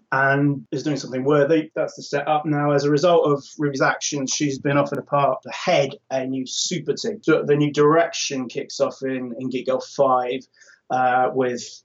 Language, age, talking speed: English, 20-39, 195 wpm